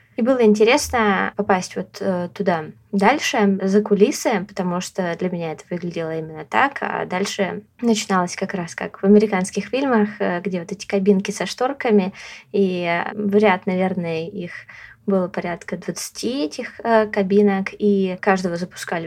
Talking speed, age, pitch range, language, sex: 140 wpm, 20-39, 180-210 Hz, Russian, female